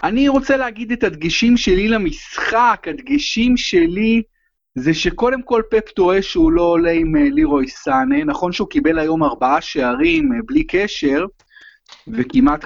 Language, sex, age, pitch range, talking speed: Hebrew, male, 30-49, 160-240 Hz, 135 wpm